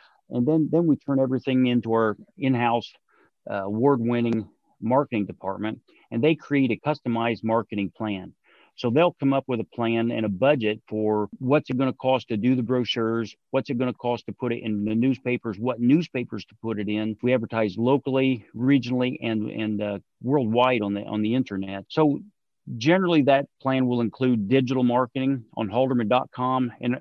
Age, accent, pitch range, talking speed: 40-59, American, 110-130 Hz, 180 wpm